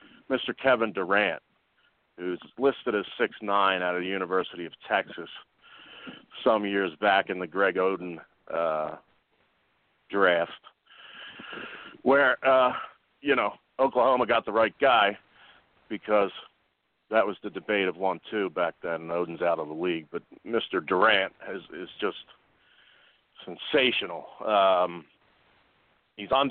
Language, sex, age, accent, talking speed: English, male, 40-59, American, 120 wpm